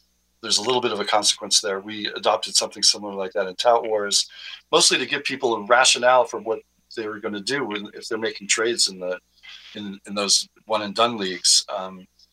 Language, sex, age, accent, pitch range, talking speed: English, male, 50-69, American, 90-120 Hz, 215 wpm